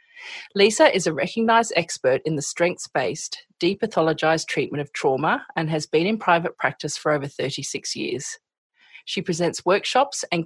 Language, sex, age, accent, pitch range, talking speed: English, female, 40-59, Australian, 150-200 Hz, 150 wpm